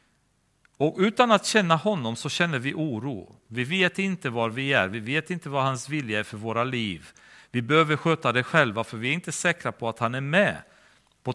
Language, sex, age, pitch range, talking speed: Swedish, male, 40-59, 115-170 Hz, 215 wpm